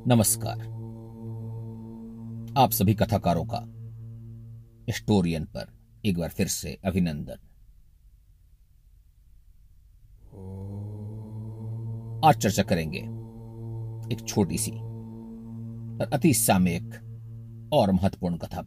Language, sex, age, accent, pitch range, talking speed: Hindi, male, 50-69, native, 95-115 Hz, 75 wpm